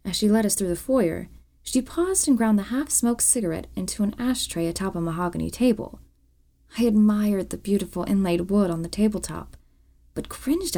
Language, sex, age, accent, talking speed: English, female, 20-39, American, 180 wpm